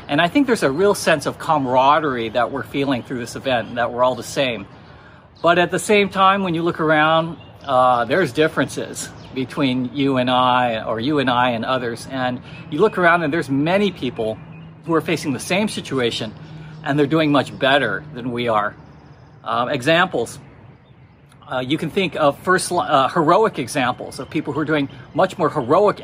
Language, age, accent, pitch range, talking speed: English, 40-59, American, 125-155 Hz, 195 wpm